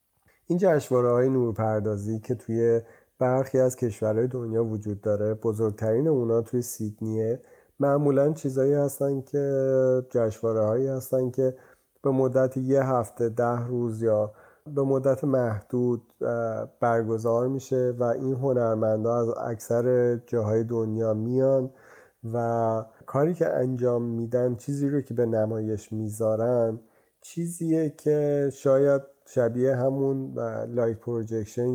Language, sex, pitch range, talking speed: Persian, male, 110-130 Hz, 110 wpm